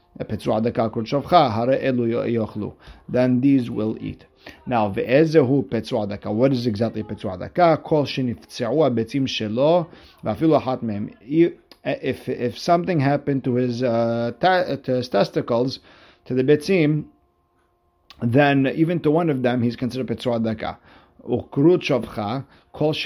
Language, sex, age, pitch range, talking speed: English, male, 50-69, 120-150 Hz, 75 wpm